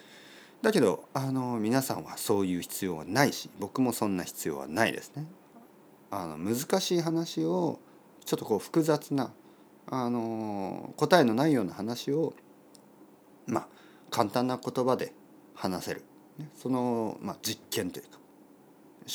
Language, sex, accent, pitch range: Japanese, male, native, 90-145 Hz